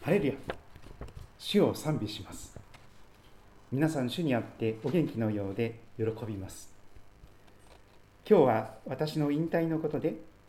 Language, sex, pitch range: Japanese, male, 100-160 Hz